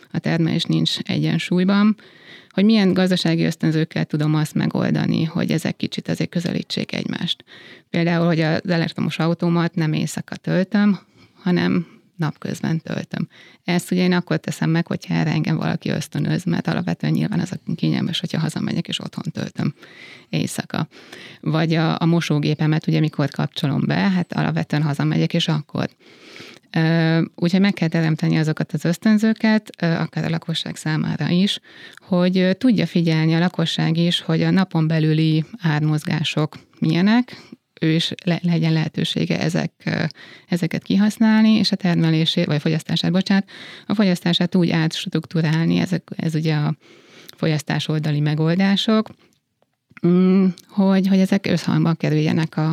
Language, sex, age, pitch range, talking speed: Hungarian, female, 20-39, 160-190 Hz, 135 wpm